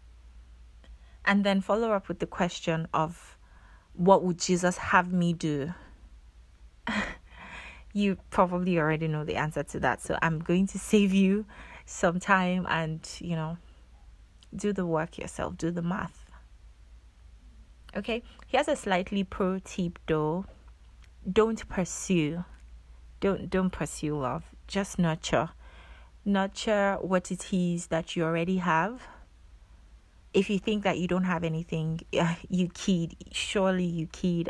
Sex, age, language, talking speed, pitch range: female, 30-49, English, 130 wpm, 150-185 Hz